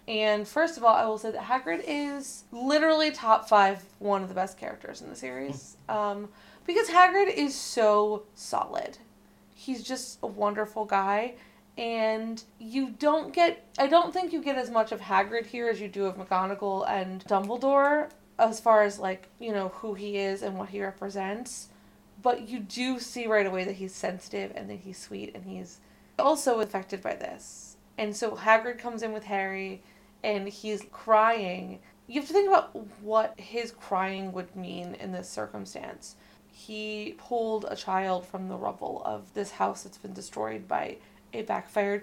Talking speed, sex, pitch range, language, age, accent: 175 wpm, female, 195-245 Hz, English, 20-39, American